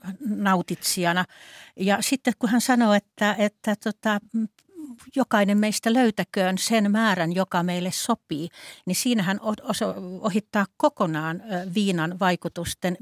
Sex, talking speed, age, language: female, 110 wpm, 60-79, Finnish